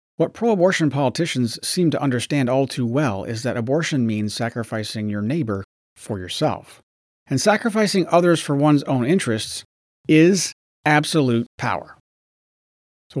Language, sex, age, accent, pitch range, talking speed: English, male, 30-49, American, 105-145 Hz, 130 wpm